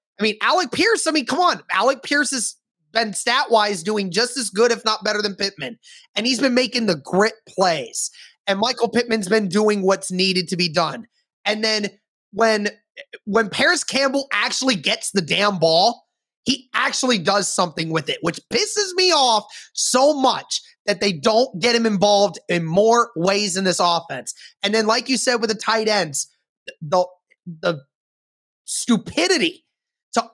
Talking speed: 170 wpm